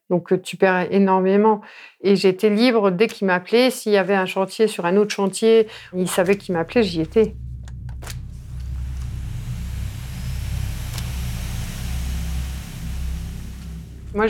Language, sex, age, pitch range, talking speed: French, female, 50-69, 170-205 Hz, 110 wpm